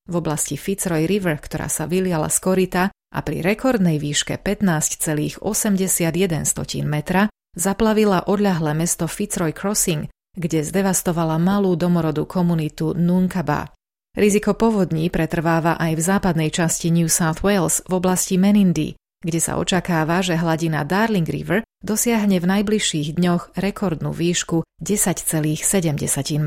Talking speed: 120 wpm